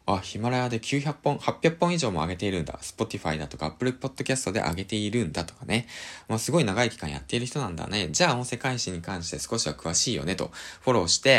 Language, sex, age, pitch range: Japanese, male, 20-39, 85-135 Hz